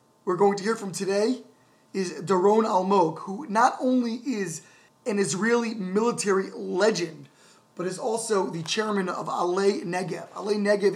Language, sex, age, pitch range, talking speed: English, male, 20-39, 180-210 Hz, 155 wpm